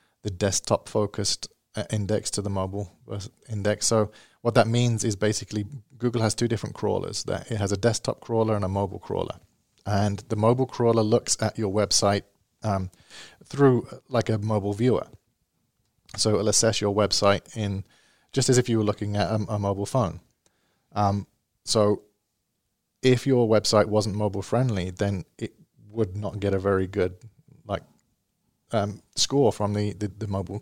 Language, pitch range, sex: English, 100-115 Hz, male